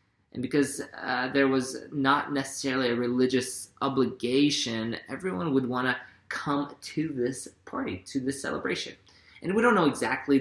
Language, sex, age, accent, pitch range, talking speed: English, male, 20-39, American, 115-135 Hz, 150 wpm